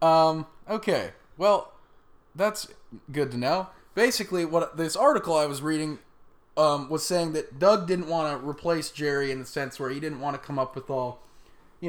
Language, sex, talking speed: English, male, 185 wpm